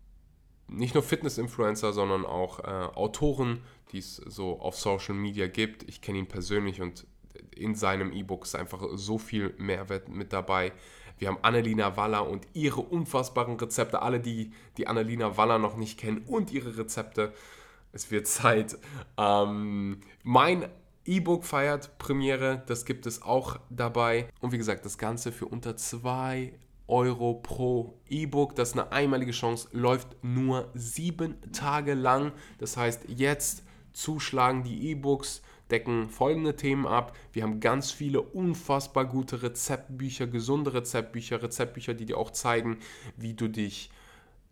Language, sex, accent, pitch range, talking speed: German, male, German, 110-130 Hz, 145 wpm